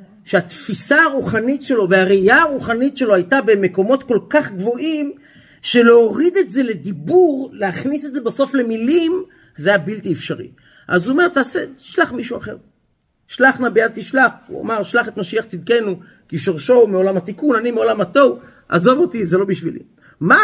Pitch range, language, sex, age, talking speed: 195-275 Hz, Hebrew, male, 40-59, 155 wpm